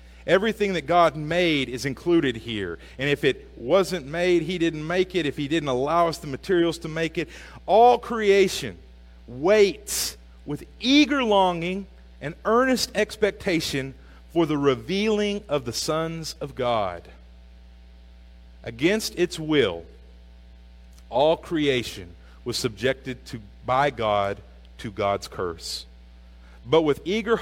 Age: 40-59